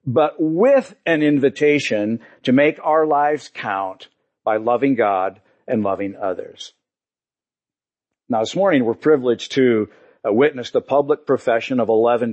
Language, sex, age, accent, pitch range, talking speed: English, male, 50-69, American, 115-155 Hz, 130 wpm